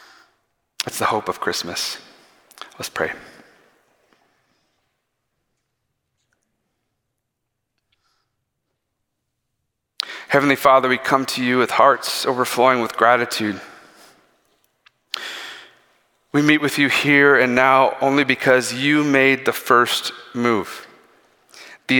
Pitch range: 115-140 Hz